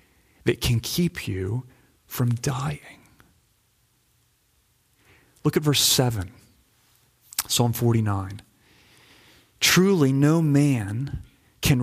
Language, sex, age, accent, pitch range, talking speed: English, male, 30-49, American, 120-155 Hz, 80 wpm